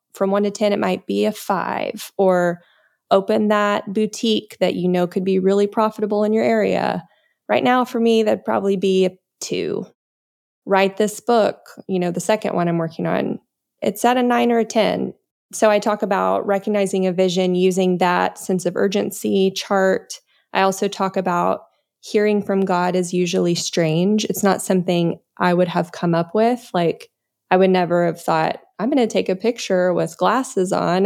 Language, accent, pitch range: English, American, 180-210 Hz